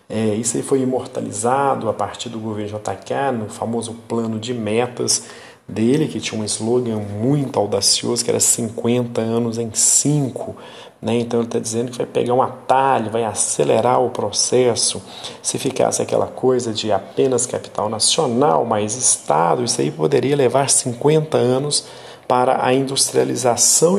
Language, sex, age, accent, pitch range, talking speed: Romanian, male, 40-59, Brazilian, 110-125 Hz, 150 wpm